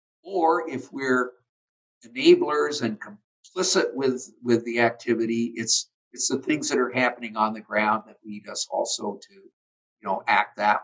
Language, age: English, 50-69